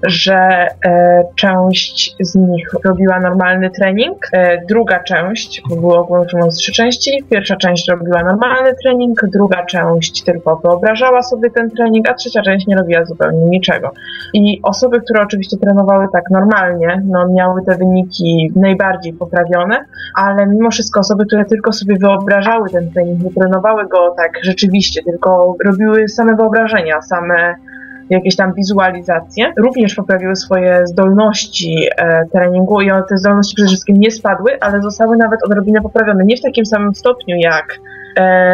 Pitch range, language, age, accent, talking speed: 180-215 Hz, Polish, 20-39, native, 145 wpm